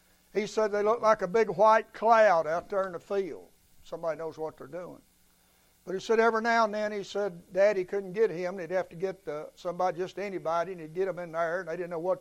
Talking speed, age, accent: 250 wpm, 60-79, American